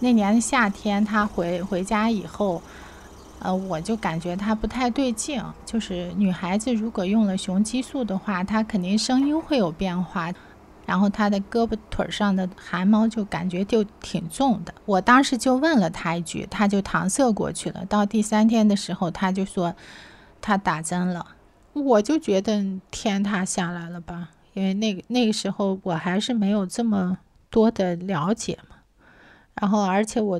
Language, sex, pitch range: Chinese, female, 185-230 Hz